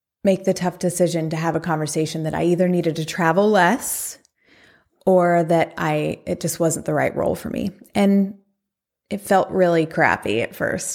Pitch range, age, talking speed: 170-205 Hz, 20-39, 180 wpm